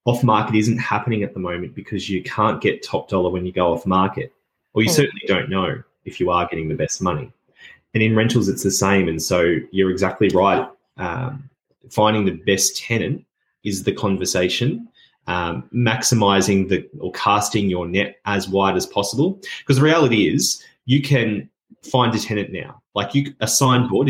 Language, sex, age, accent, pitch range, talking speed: English, male, 20-39, Australian, 100-130 Hz, 180 wpm